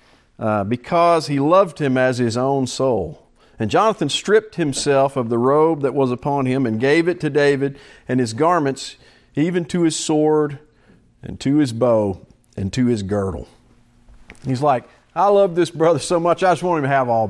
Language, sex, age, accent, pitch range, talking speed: English, male, 50-69, American, 120-160 Hz, 190 wpm